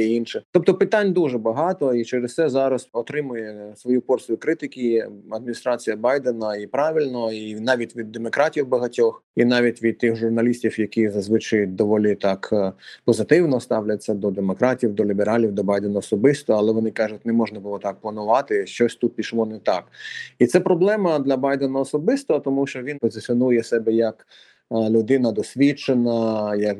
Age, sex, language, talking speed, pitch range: 20-39, male, Ukrainian, 150 wpm, 110-125 Hz